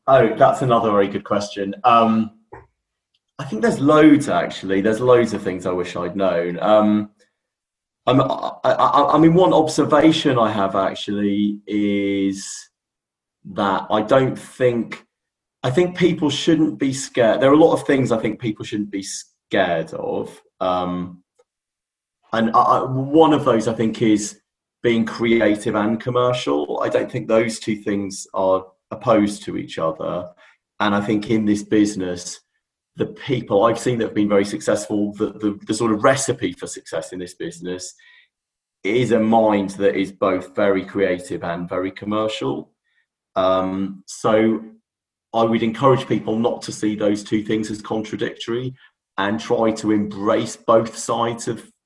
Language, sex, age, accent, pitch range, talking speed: English, male, 30-49, British, 100-115 Hz, 155 wpm